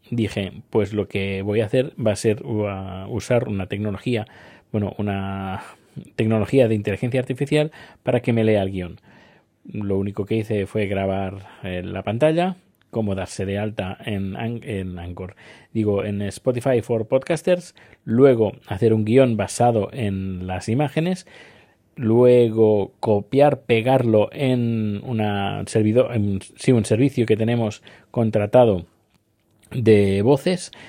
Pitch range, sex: 100-130 Hz, male